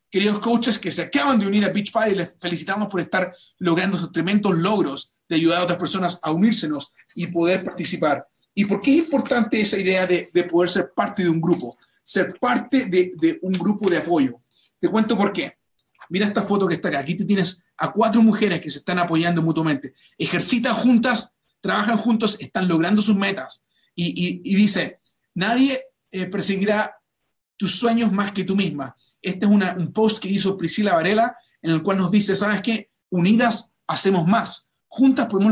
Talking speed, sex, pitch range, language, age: 195 wpm, male, 175-225 Hz, Spanish, 30-49